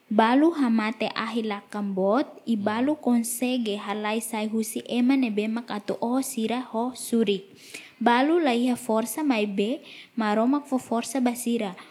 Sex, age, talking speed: female, 20-39, 140 wpm